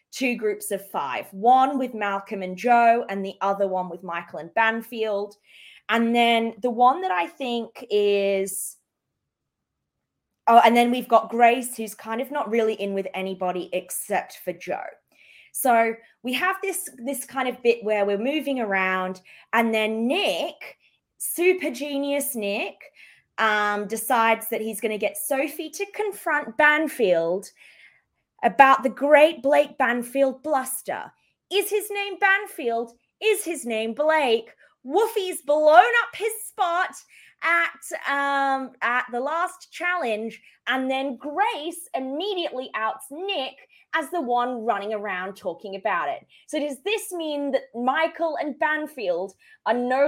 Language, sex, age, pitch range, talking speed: English, female, 20-39, 215-305 Hz, 145 wpm